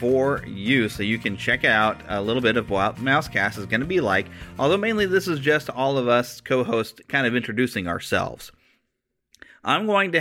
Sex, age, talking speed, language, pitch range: male, 30-49, 200 wpm, English, 110-150 Hz